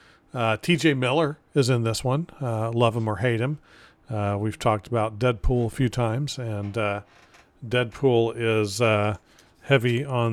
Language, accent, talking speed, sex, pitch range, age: English, American, 165 wpm, male, 110-130 Hz, 40-59